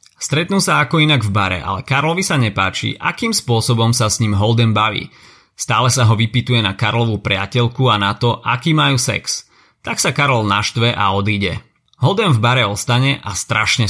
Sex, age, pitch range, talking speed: male, 30-49, 110-135 Hz, 180 wpm